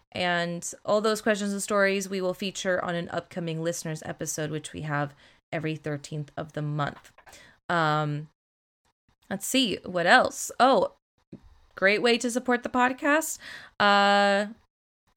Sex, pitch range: female, 175-220 Hz